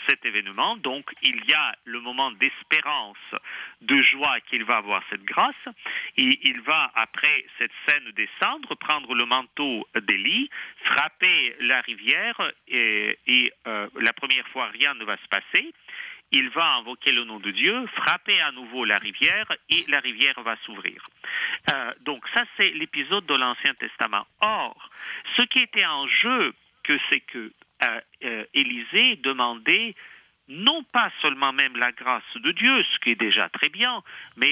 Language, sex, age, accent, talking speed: French, male, 50-69, French, 165 wpm